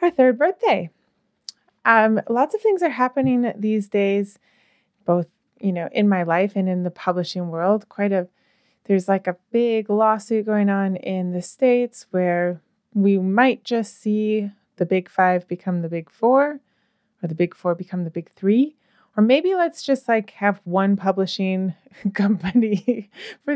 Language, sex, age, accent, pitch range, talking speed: English, female, 20-39, American, 185-235 Hz, 165 wpm